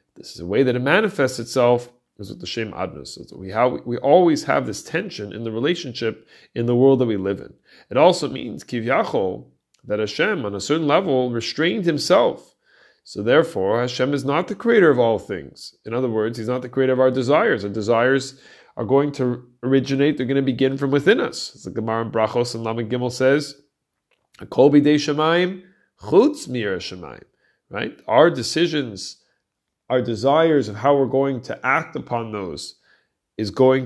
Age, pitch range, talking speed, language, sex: 30-49, 115-140 Hz, 180 wpm, English, male